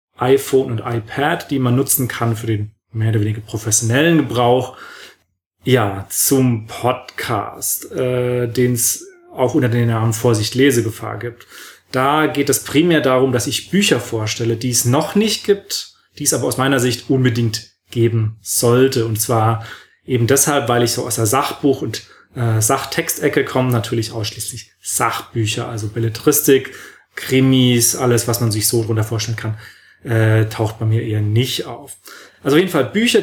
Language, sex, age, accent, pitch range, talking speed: German, male, 30-49, German, 115-135 Hz, 160 wpm